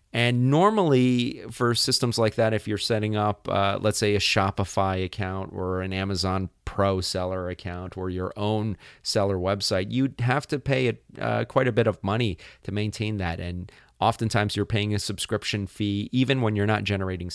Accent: American